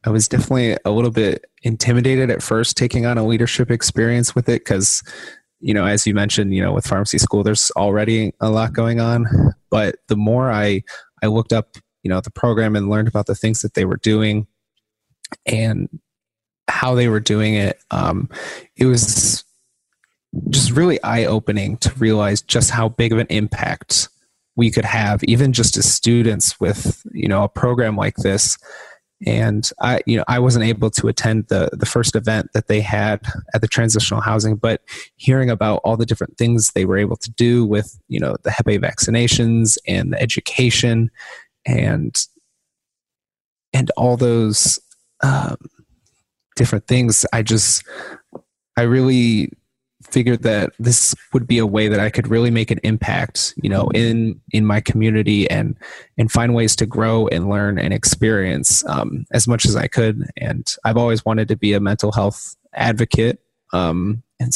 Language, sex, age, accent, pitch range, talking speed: English, male, 20-39, American, 105-120 Hz, 175 wpm